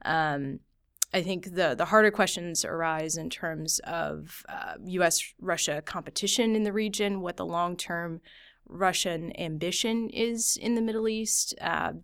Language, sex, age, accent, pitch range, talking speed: English, female, 20-39, American, 155-185 Hz, 150 wpm